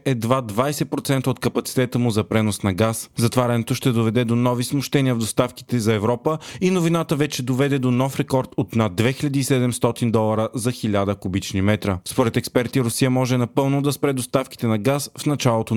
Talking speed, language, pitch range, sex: 175 wpm, Bulgarian, 115-135 Hz, male